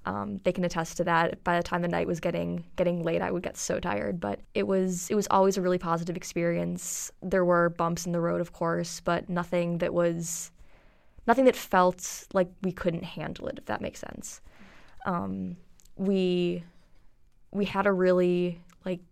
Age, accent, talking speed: 20-39, American, 190 wpm